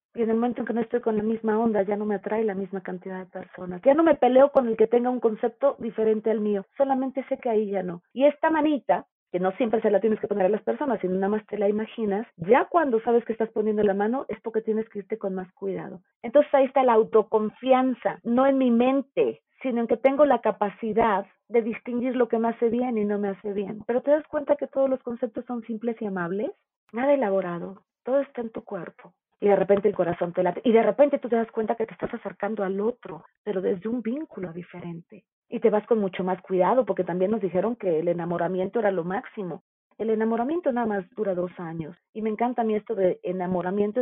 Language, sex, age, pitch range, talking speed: Spanish, female, 40-59, 195-245 Hz, 245 wpm